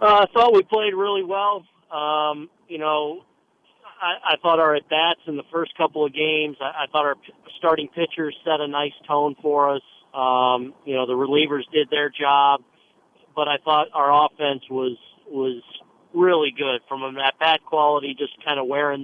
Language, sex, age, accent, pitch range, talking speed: English, male, 40-59, American, 140-160 Hz, 185 wpm